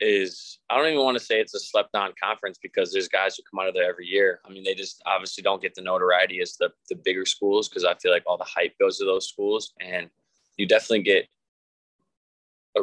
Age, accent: 20-39, American